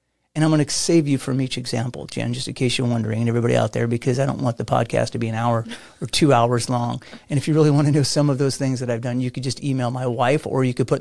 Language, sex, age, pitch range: English, male, 30-49, 125-165 Hz